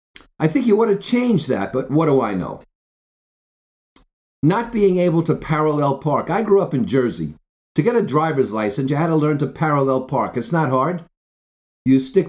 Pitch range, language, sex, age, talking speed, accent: 130-180 Hz, English, male, 50-69, 195 wpm, American